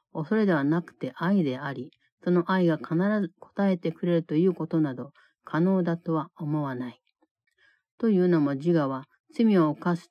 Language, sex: Japanese, female